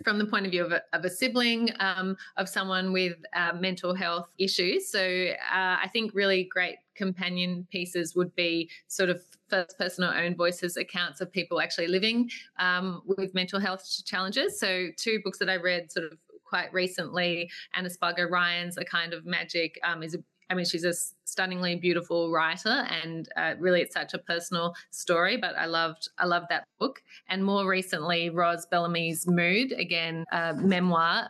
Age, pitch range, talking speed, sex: 20-39, 170-190 Hz, 180 wpm, female